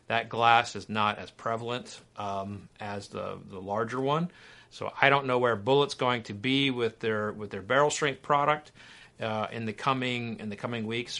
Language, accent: English, American